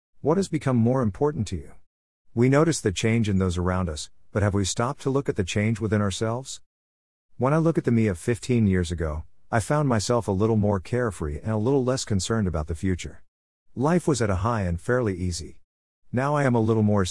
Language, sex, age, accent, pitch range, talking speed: English, male, 50-69, American, 90-120 Hz, 230 wpm